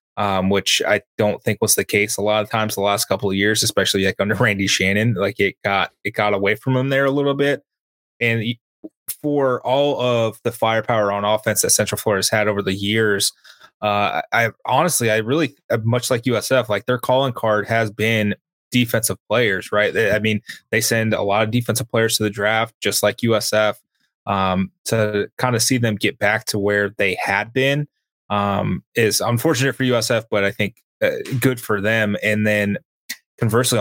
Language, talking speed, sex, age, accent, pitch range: English, 195 wpm, male, 20-39, American, 105-130 Hz